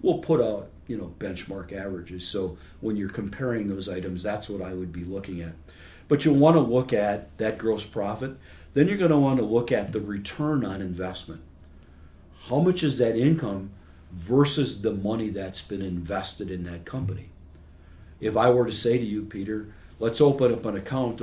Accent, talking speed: American, 190 wpm